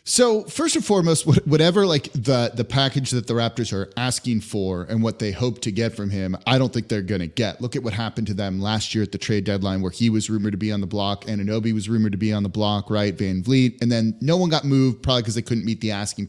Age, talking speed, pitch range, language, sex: 20-39, 275 wpm, 110-145 Hz, English, male